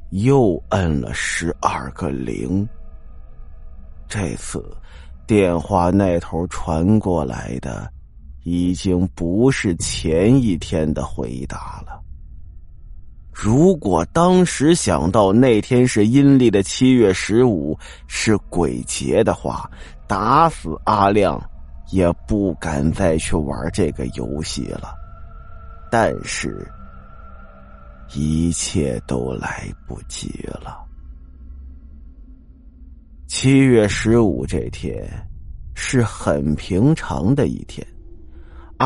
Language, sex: Chinese, male